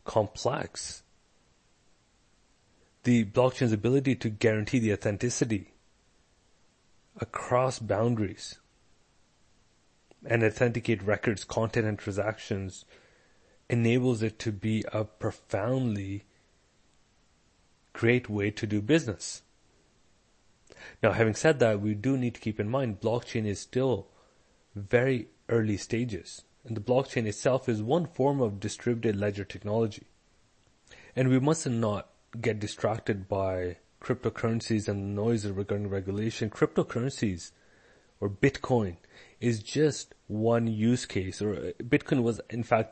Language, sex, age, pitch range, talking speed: English, male, 30-49, 100-120 Hz, 115 wpm